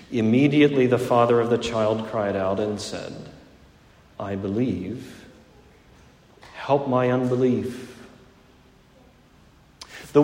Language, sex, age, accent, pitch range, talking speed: English, male, 40-59, American, 120-155 Hz, 95 wpm